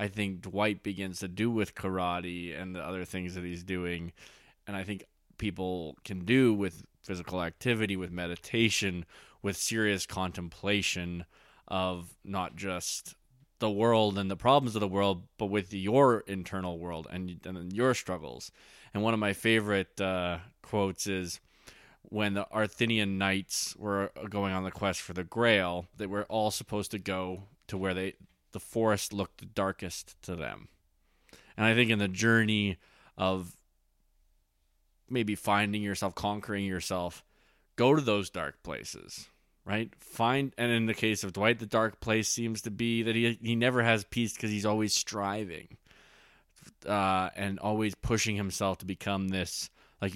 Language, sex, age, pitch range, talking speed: English, male, 20-39, 90-110 Hz, 160 wpm